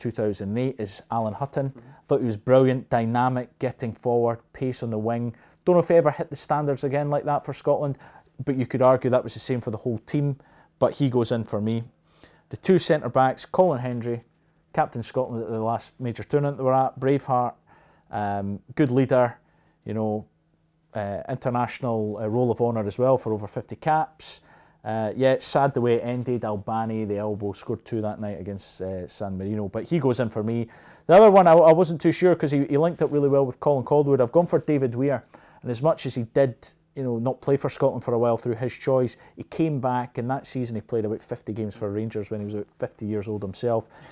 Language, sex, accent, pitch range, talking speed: English, male, British, 110-140 Hz, 230 wpm